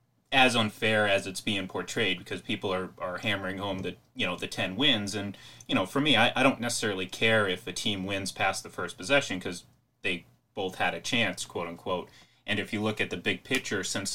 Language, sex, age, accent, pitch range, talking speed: English, male, 30-49, American, 95-115 Hz, 225 wpm